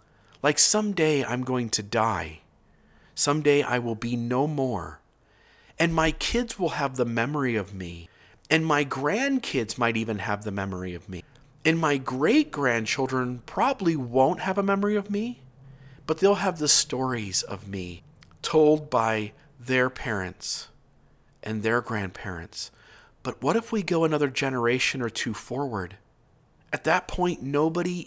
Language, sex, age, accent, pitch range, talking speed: English, male, 40-59, American, 115-160 Hz, 145 wpm